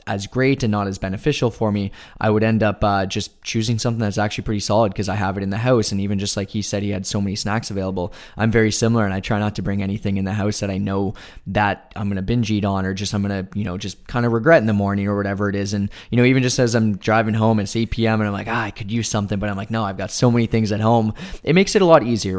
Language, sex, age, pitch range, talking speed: English, male, 10-29, 100-115 Hz, 310 wpm